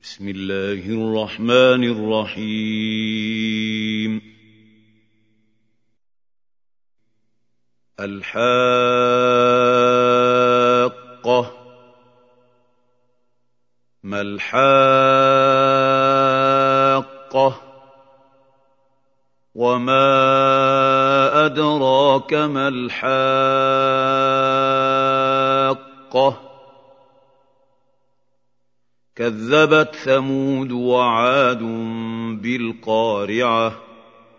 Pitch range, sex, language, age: 115-135 Hz, male, Arabic, 50-69